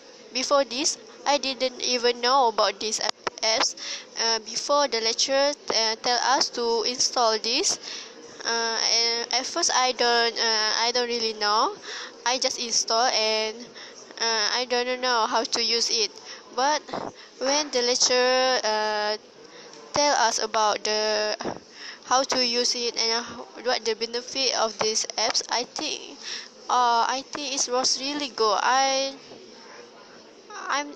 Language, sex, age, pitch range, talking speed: English, female, 20-39, 225-265 Hz, 140 wpm